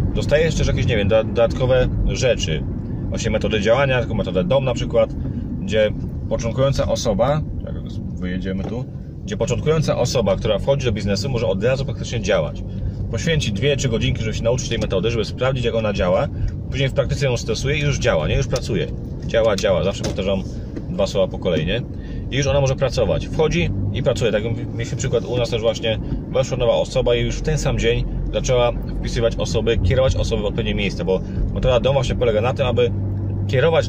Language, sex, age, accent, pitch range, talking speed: Polish, male, 30-49, native, 105-130 Hz, 190 wpm